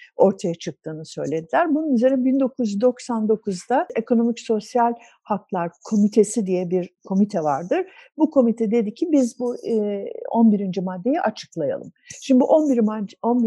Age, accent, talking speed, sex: 60-79, Turkish, 110 wpm, female